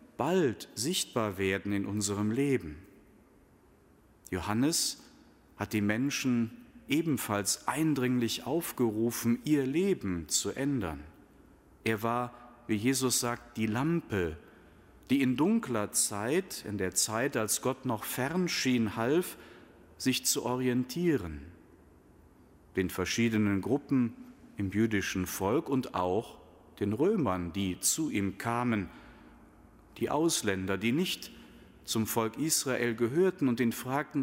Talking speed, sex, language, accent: 115 wpm, male, German, German